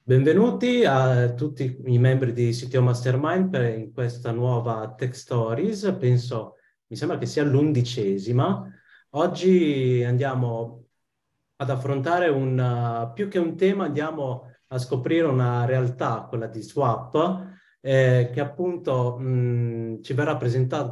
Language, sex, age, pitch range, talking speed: Italian, male, 30-49, 120-145 Hz, 125 wpm